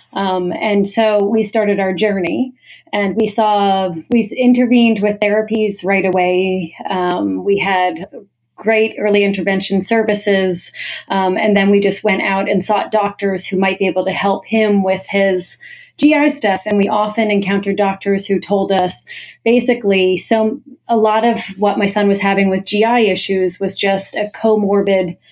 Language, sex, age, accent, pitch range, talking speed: English, female, 30-49, American, 190-220 Hz, 165 wpm